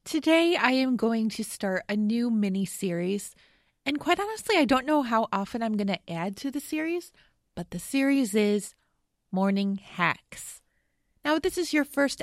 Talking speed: 180 wpm